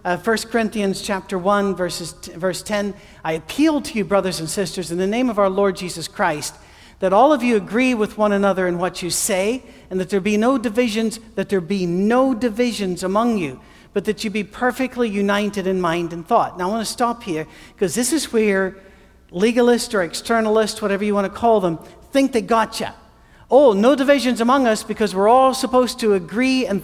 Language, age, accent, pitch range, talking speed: English, 60-79, American, 175-225 Hz, 210 wpm